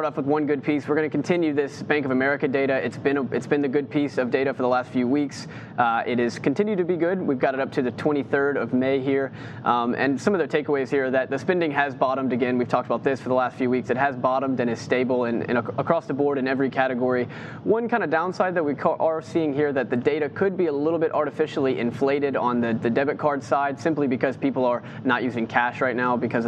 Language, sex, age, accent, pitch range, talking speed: English, male, 20-39, American, 125-150 Hz, 270 wpm